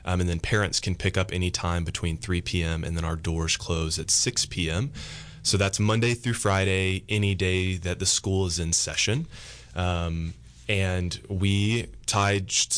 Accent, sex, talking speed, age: American, male, 175 wpm, 20-39